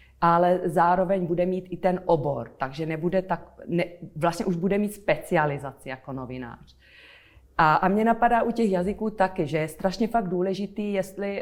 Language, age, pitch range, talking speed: Czech, 30-49, 160-190 Hz, 145 wpm